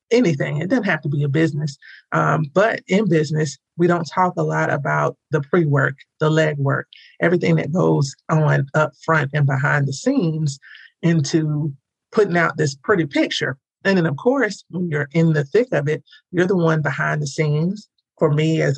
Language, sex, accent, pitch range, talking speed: English, male, American, 150-180 Hz, 185 wpm